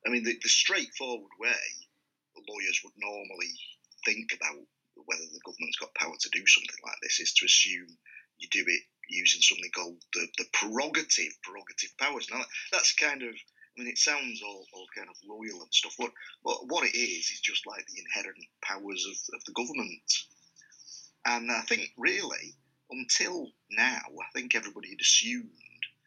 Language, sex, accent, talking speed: English, male, British, 175 wpm